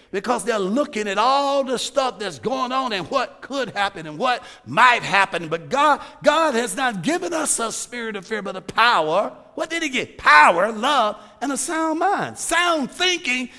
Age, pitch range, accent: 50-69, 205-285 Hz, American